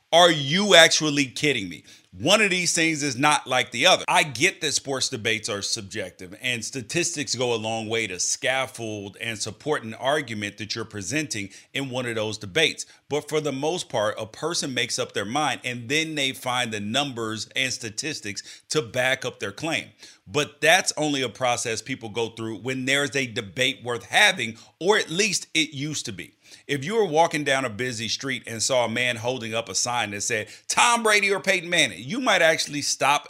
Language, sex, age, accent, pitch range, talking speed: English, male, 30-49, American, 120-160 Hz, 205 wpm